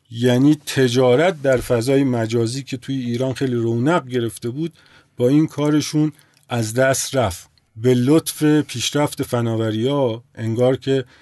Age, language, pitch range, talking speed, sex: 50-69, Persian, 115-140 Hz, 130 wpm, male